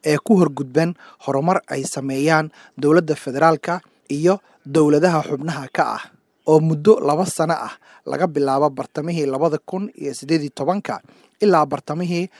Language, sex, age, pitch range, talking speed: English, male, 30-49, 145-175 Hz, 135 wpm